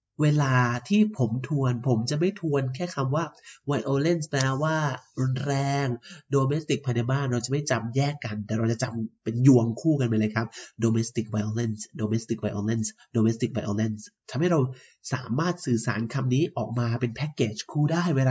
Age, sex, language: 30-49, male, Thai